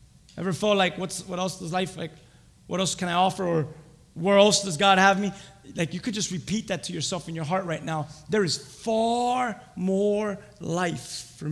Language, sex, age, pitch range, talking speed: English, male, 20-39, 145-180 Hz, 210 wpm